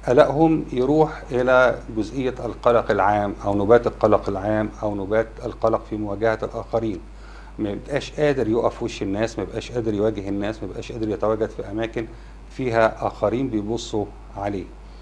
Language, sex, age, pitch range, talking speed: Arabic, male, 50-69, 105-130 Hz, 135 wpm